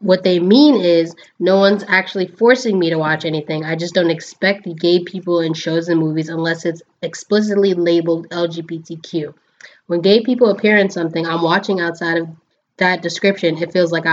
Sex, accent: female, American